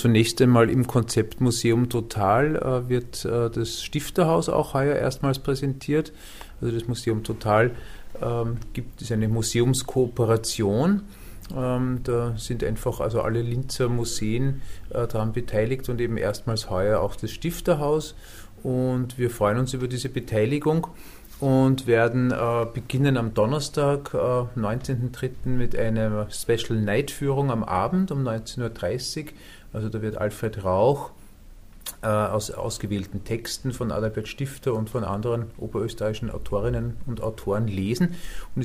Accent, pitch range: German, 110-130 Hz